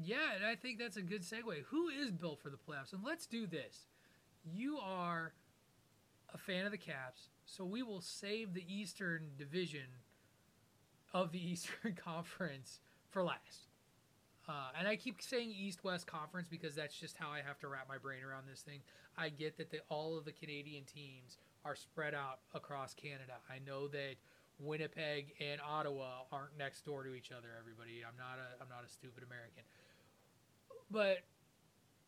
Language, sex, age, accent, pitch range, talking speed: English, male, 30-49, American, 140-190 Hz, 175 wpm